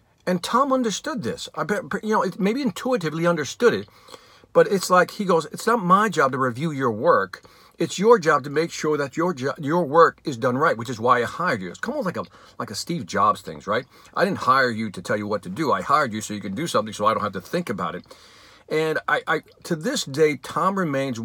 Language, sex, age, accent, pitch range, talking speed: English, male, 50-69, American, 115-165 Hz, 250 wpm